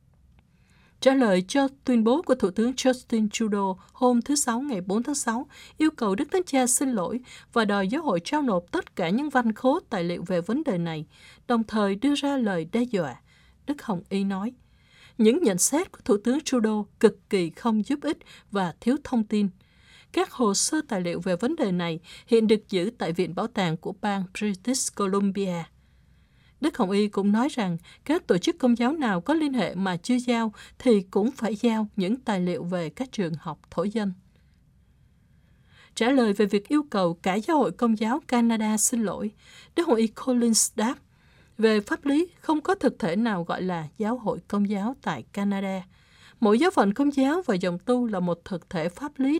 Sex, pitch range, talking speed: female, 195-255 Hz, 205 wpm